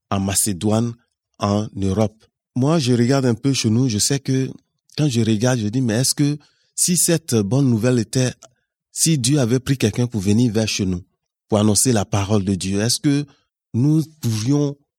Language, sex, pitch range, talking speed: French, male, 110-135 Hz, 190 wpm